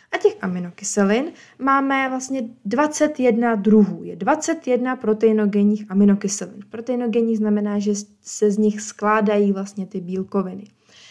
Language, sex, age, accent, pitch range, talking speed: Czech, female, 20-39, native, 205-255 Hz, 115 wpm